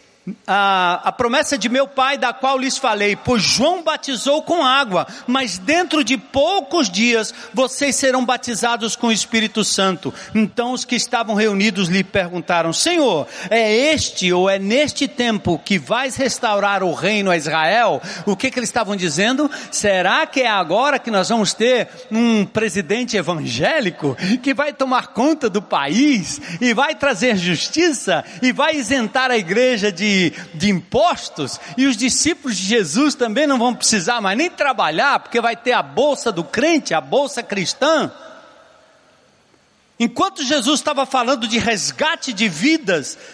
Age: 60-79